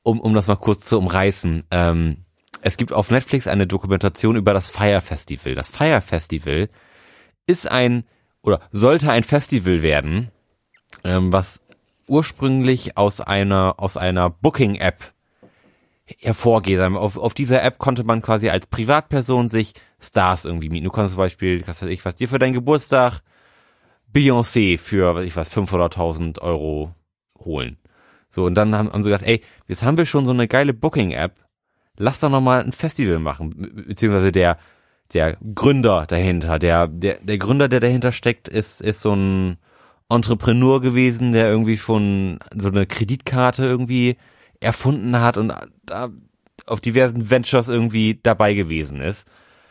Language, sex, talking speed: German, male, 155 wpm